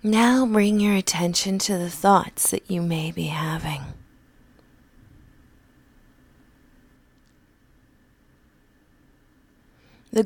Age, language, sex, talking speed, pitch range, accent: 30-49, English, female, 75 wpm, 160-215 Hz, American